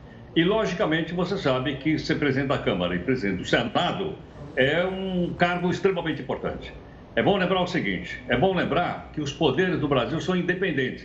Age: 60-79